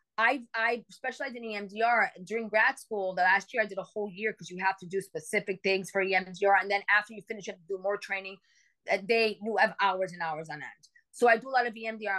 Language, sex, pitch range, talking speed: English, female, 190-230 Hz, 250 wpm